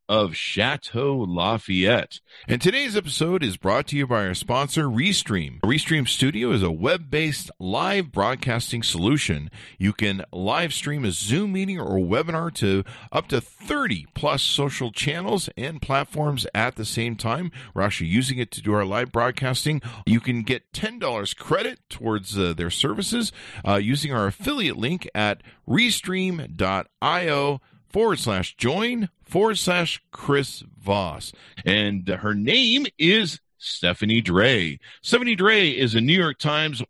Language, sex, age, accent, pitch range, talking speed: English, male, 50-69, American, 105-170 Hz, 145 wpm